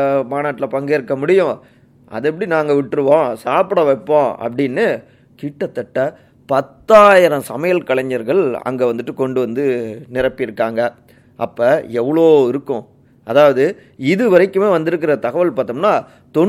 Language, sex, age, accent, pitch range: Tamil, male, 30-49, native, 130-165 Hz